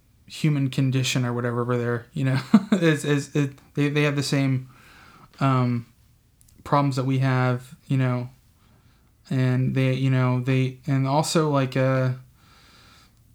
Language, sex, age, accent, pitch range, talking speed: English, male, 20-39, American, 125-145 Hz, 145 wpm